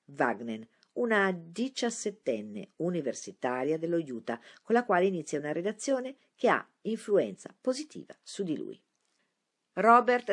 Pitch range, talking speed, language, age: 145-205 Hz, 115 wpm, Italian, 50-69